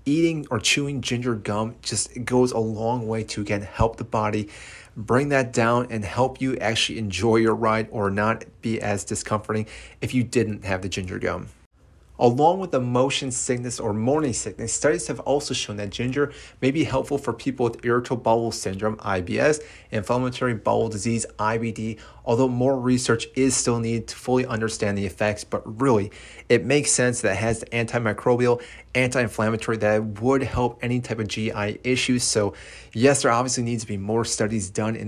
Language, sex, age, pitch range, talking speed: English, male, 30-49, 105-125 Hz, 180 wpm